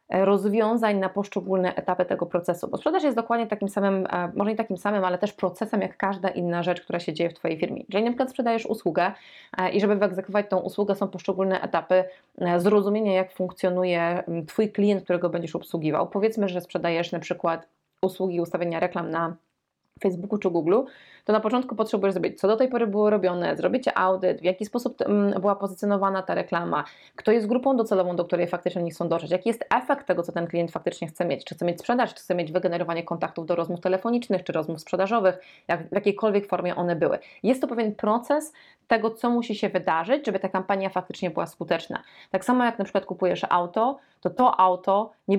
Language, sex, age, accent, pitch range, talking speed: Polish, female, 20-39, native, 180-215 Hz, 195 wpm